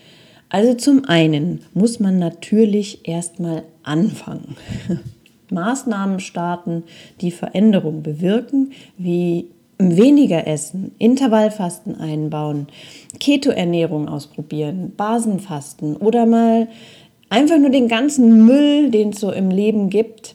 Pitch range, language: 170-225 Hz, German